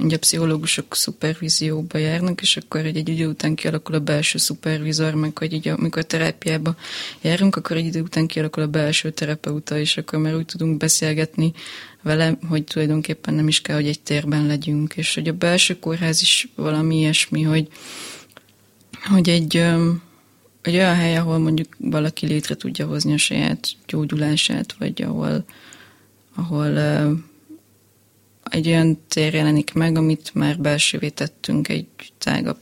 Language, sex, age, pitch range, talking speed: Hungarian, female, 20-39, 150-165 Hz, 150 wpm